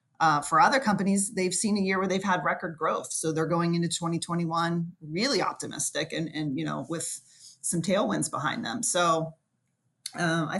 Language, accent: English, American